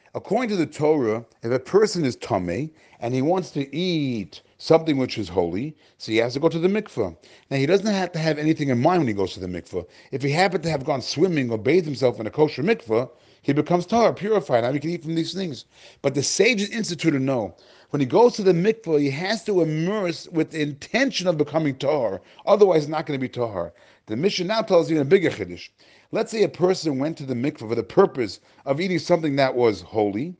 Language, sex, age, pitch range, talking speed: English, male, 40-59, 130-180 Hz, 235 wpm